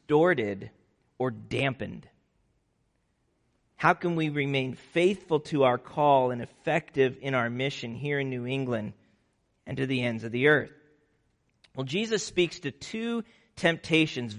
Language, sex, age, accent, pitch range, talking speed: English, male, 40-59, American, 125-160 Hz, 140 wpm